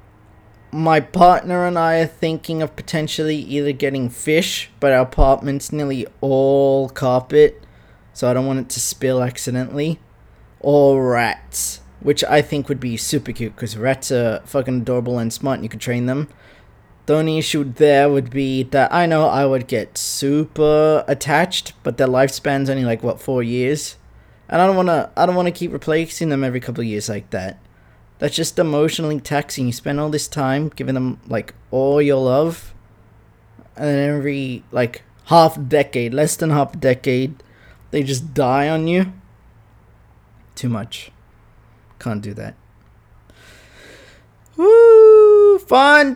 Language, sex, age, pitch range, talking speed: English, male, 20-39, 120-160 Hz, 155 wpm